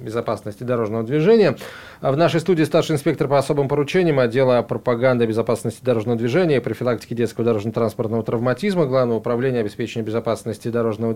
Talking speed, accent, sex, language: 135 wpm, native, male, Russian